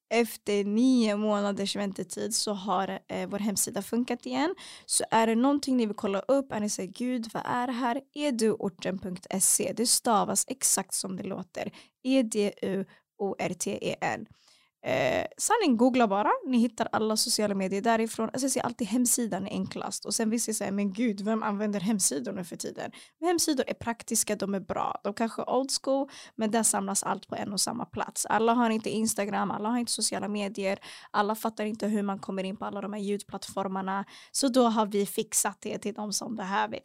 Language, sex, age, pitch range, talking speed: Swedish, female, 20-39, 200-235 Hz, 190 wpm